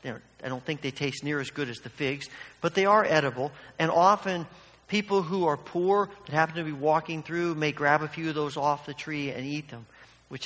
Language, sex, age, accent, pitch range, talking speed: English, male, 50-69, American, 115-170 Hz, 230 wpm